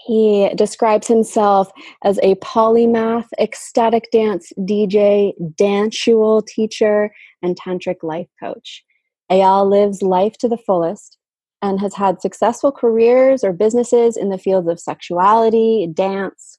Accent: American